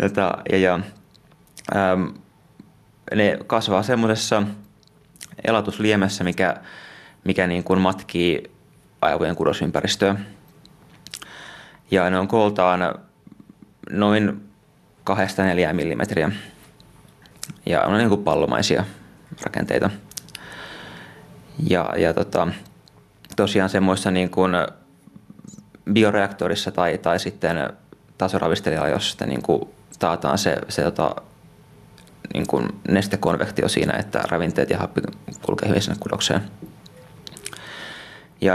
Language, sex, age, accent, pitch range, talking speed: Finnish, male, 20-39, native, 90-100 Hz, 85 wpm